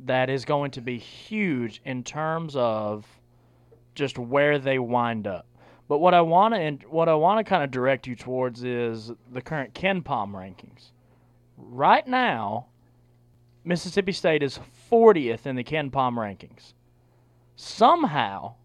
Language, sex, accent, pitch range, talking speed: English, male, American, 120-185 Hz, 135 wpm